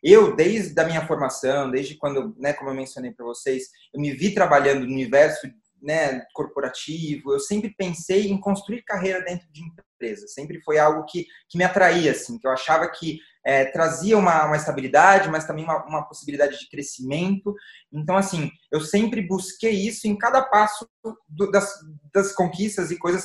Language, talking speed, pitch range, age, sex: Portuguese, 180 wpm, 150-195 Hz, 20-39, male